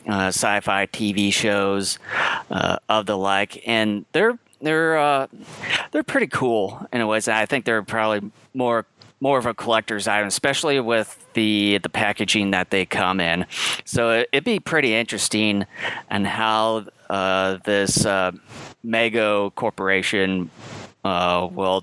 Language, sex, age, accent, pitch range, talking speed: English, male, 30-49, American, 95-115 Hz, 150 wpm